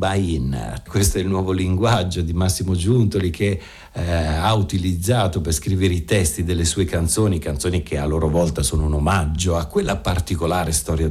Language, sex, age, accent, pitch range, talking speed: Italian, male, 60-79, native, 80-105 Hz, 165 wpm